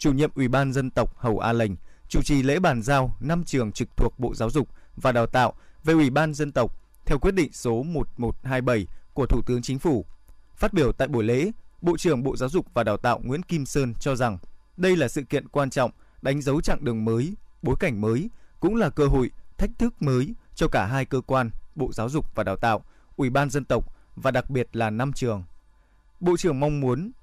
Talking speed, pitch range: 225 wpm, 120-155 Hz